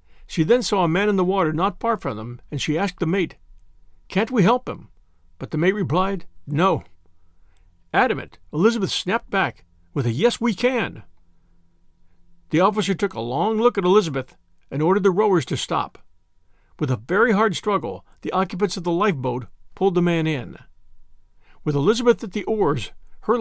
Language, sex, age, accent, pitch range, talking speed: English, male, 50-69, American, 135-200 Hz, 175 wpm